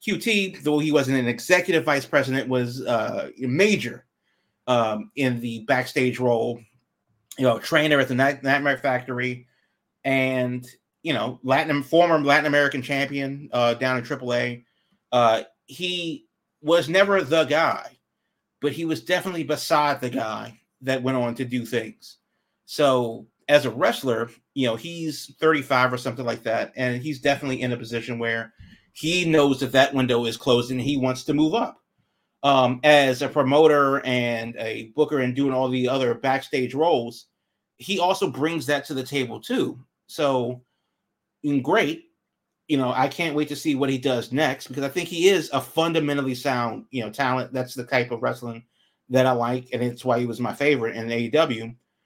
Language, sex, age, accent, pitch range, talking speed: English, male, 30-49, American, 125-150 Hz, 170 wpm